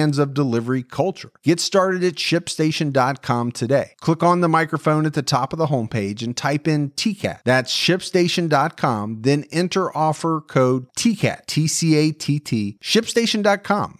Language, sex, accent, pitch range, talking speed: English, male, American, 120-160 Hz, 135 wpm